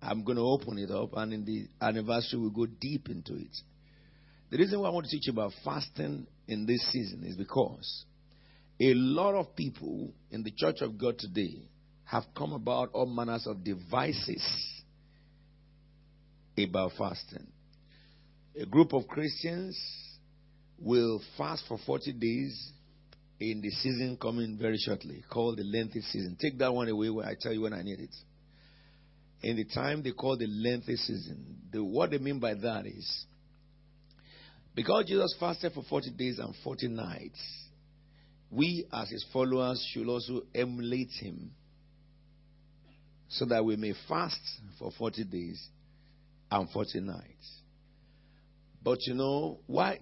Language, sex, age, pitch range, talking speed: English, male, 50-69, 115-145 Hz, 150 wpm